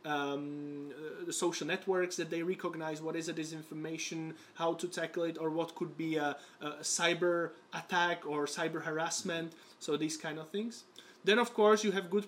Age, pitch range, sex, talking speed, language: 30-49, 160-190 Hz, male, 180 wpm, English